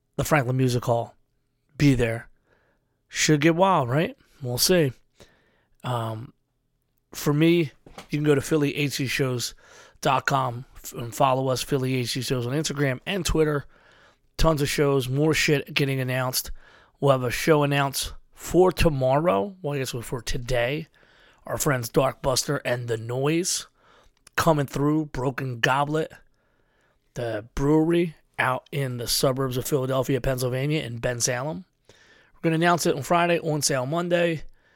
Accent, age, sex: American, 30-49, male